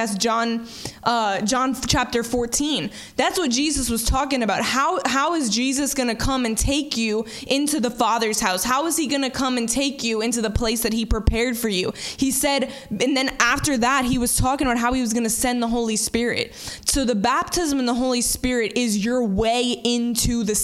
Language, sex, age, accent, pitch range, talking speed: English, female, 20-39, American, 225-260 Hz, 205 wpm